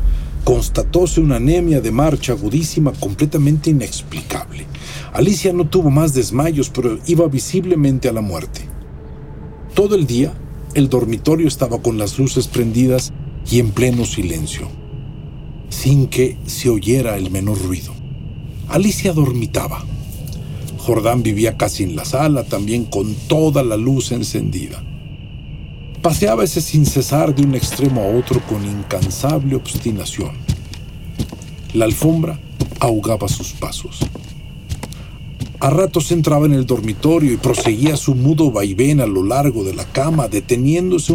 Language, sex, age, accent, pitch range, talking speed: Spanish, male, 50-69, Mexican, 110-150 Hz, 130 wpm